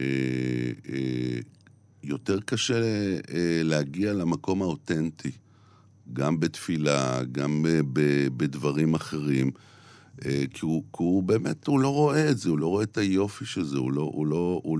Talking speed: 155 wpm